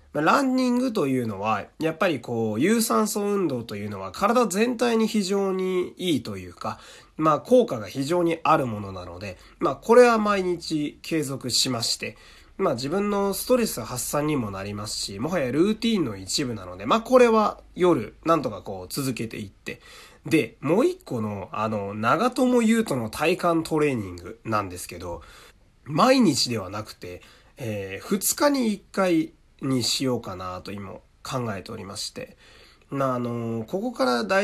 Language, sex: Japanese, male